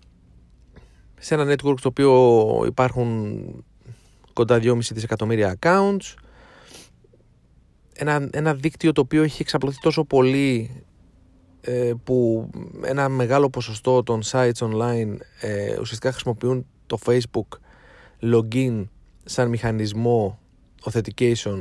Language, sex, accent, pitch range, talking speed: Greek, male, native, 110-130 Hz, 100 wpm